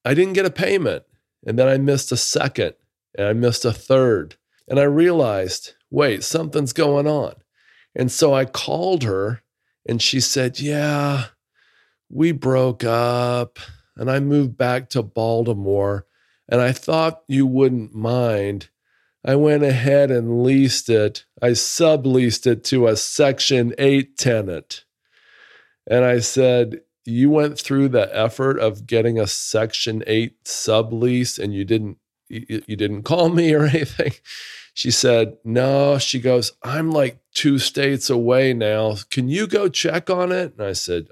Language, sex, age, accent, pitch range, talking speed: English, male, 40-59, American, 115-145 Hz, 150 wpm